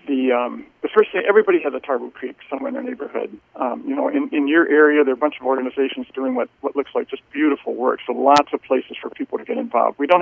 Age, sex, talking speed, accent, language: 50-69, male, 270 wpm, American, English